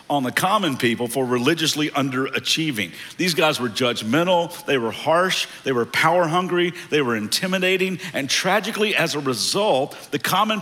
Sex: male